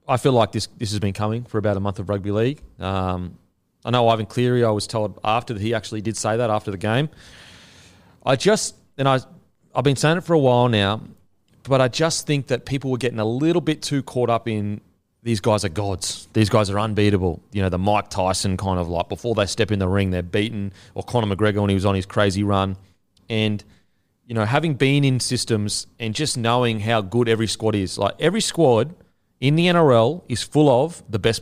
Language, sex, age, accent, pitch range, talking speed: English, male, 30-49, Australian, 100-125 Hz, 230 wpm